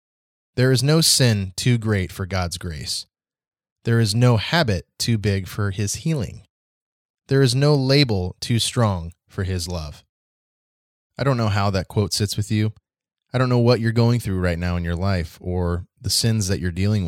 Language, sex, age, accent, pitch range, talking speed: English, male, 20-39, American, 90-115 Hz, 190 wpm